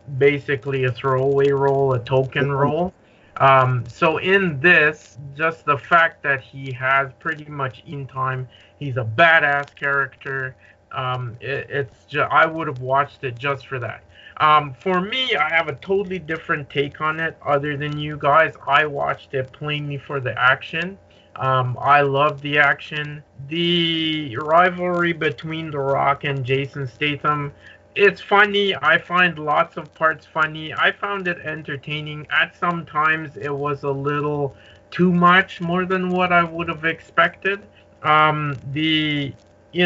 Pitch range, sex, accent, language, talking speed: 135-160 Hz, male, American, English, 155 wpm